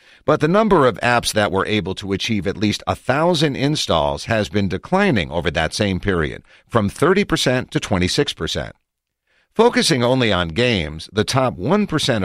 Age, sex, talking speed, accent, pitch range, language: 50-69, male, 155 wpm, American, 95-130 Hz, English